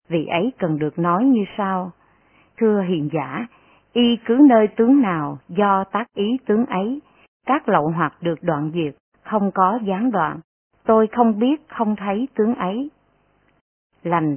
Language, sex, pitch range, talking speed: Vietnamese, female, 165-225 Hz, 160 wpm